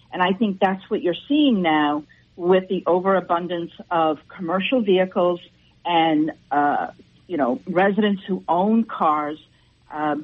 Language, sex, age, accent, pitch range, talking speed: English, female, 50-69, American, 160-200 Hz, 135 wpm